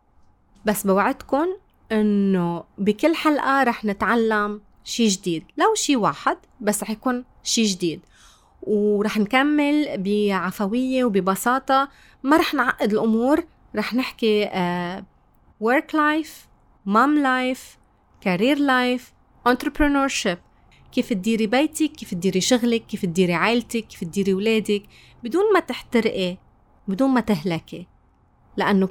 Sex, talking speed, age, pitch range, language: female, 110 wpm, 30-49, 200-255 Hz, Arabic